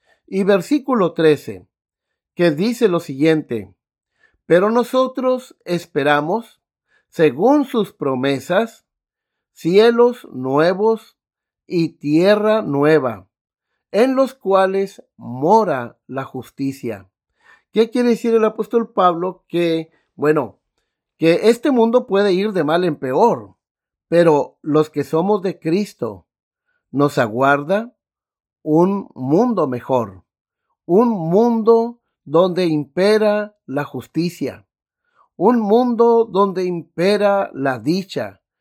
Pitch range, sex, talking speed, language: 150-225 Hz, male, 100 wpm, Spanish